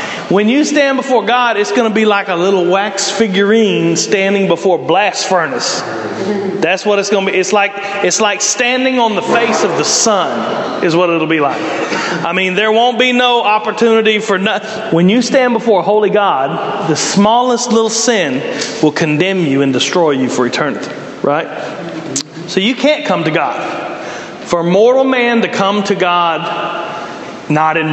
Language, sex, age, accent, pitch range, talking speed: English, male, 40-59, American, 180-230 Hz, 180 wpm